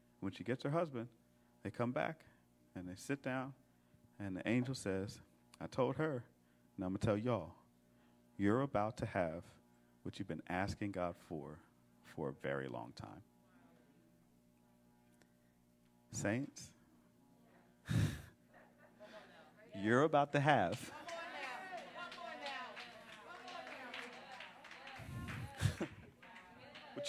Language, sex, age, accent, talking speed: English, male, 40-59, American, 100 wpm